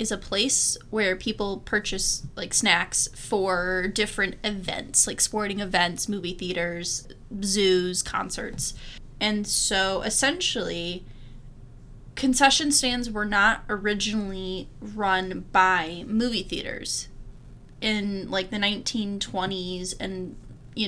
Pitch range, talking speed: 185-235 Hz, 105 wpm